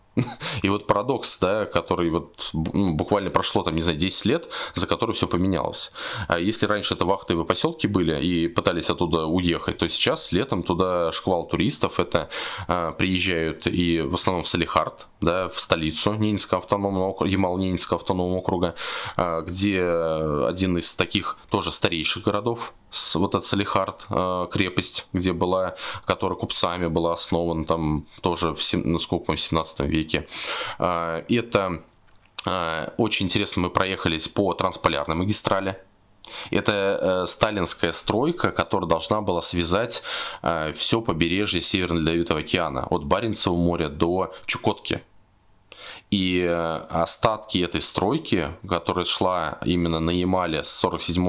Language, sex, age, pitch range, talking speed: Russian, male, 20-39, 85-95 Hz, 130 wpm